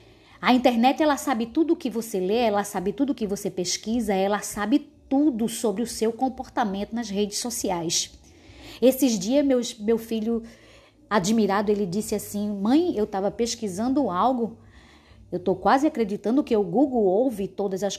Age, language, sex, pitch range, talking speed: 20-39, Portuguese, female, 190-260 Hz, 165 wpm